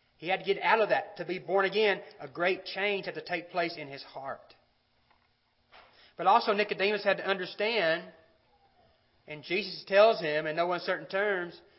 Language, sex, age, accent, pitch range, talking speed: English, male, 40-59, American, 165-220 Hz, 180 wpm